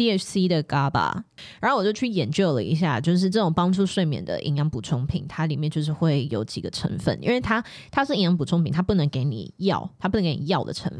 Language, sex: Chinese, female